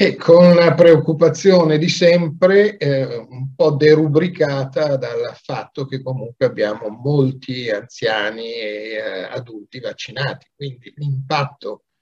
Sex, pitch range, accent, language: male, 130-170 Hz, native, Italian